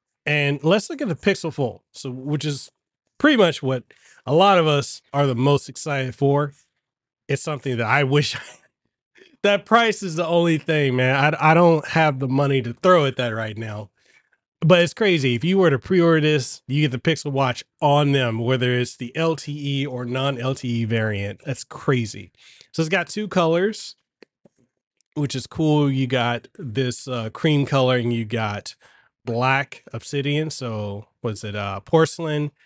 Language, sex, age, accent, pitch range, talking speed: English, male, 30-49, American, 125-160 Hz, 175 wpm